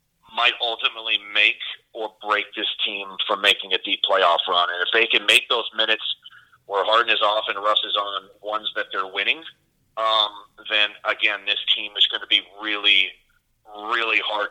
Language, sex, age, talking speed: English, male, 30-49, 180 wpm